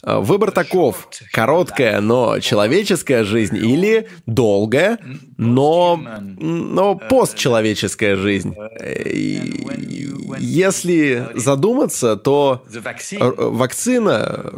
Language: Russian